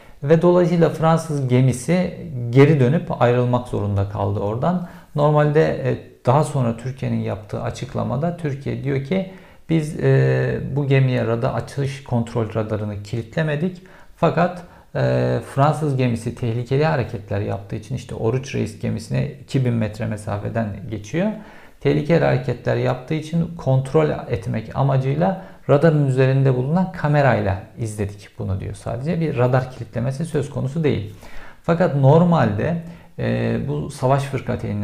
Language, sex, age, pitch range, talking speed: Turkish, male, 50-69, 115-150 Hz, 120 wpm